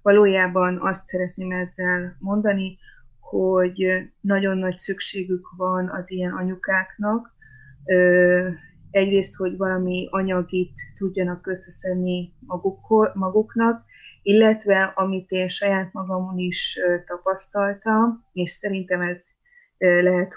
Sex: female